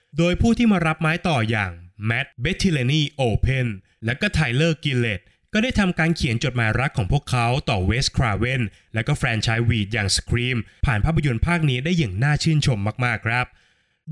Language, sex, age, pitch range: Thai, male, 20-39, 115-160 Hz